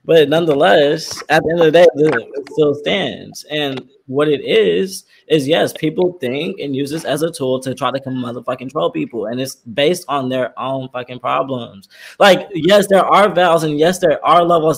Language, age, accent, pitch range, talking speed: English, 20-39, American, 125-165 Hz, 205 wpm